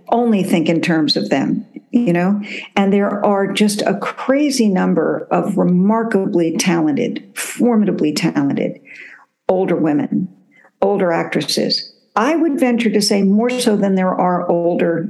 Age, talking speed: 60-79, 140 wpm